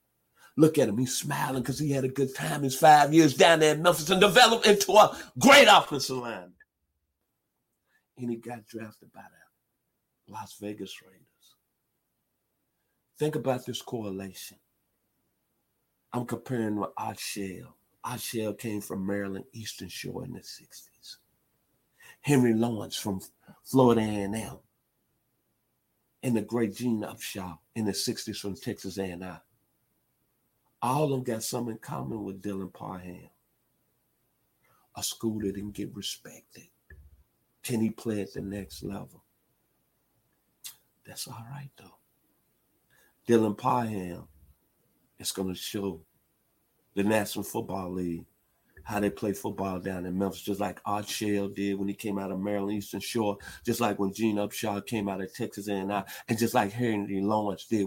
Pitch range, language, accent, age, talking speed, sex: 95-120 Hz, English, American, 50-69, 150 wpm, male